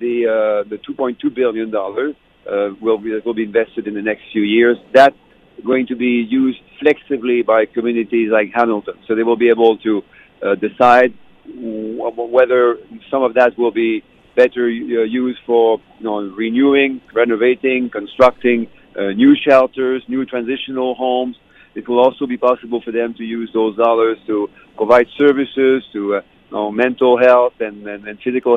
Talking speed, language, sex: 165 wpm, English, male